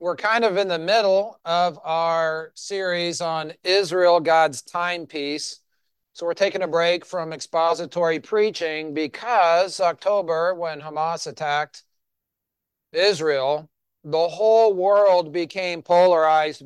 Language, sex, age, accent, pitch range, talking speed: English, male, 40-59, American, 160-200 Hz, 115 wpm